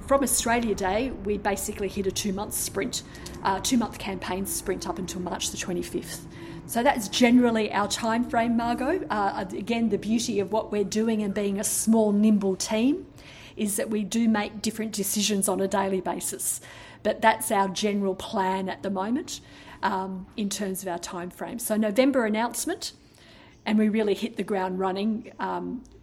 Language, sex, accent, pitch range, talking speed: English, female, Australian, 195-225 Hz, 180 wpm